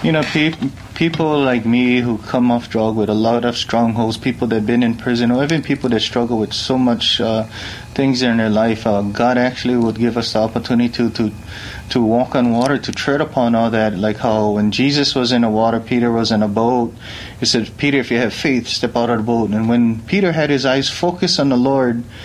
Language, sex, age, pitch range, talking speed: English, male, 30-49, 115-135 Hz, 235 wpm